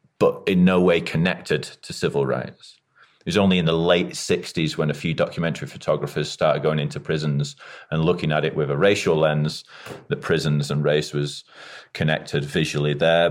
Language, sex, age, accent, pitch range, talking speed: English, male, 30-49, British, 75-95 Hz, 180 wpm